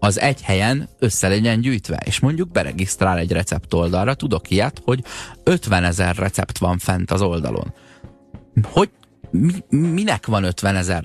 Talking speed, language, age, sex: 145 wpm, Hungarian, 30-49, male